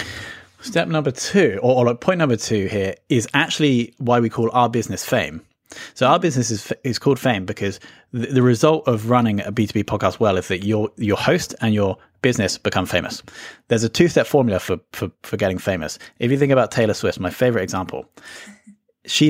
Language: English